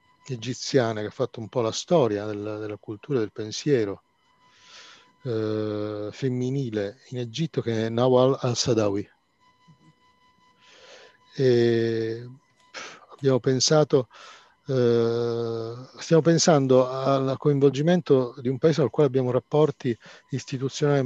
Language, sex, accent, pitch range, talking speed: Italian, male, native, 115-145 Hz, 105 wpm